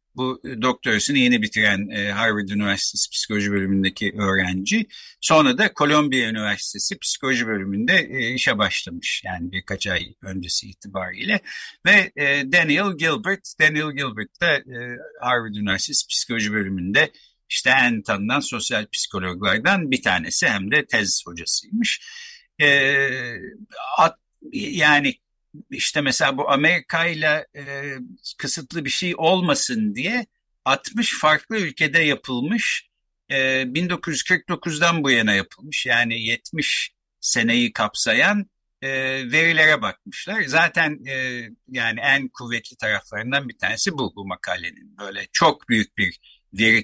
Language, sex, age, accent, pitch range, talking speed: Turkish, male, 60-79, native, 105-170 Hz, 120 wpm